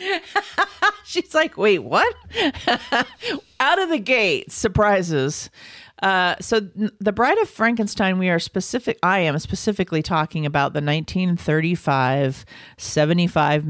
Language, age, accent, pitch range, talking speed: English, 40-59, American, 150-200 Hz, 115 wpm